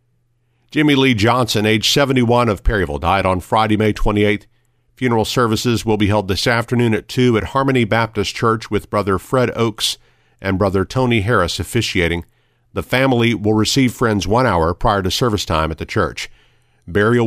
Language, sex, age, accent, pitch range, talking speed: English, male, 50-69, American, 105-120 Hz, 170 wpm